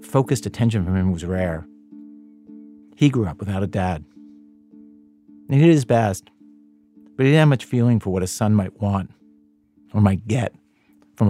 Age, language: 50-69, English